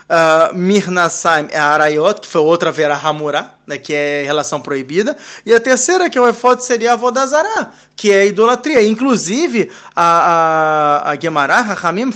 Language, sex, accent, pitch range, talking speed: Portuguese, male, Brazilian, 165-230 Hz, 165 wpm